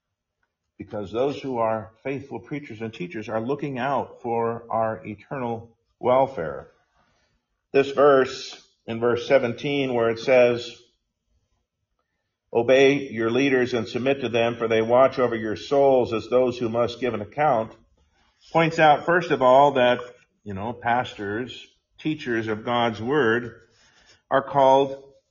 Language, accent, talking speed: English, American, 140 wpm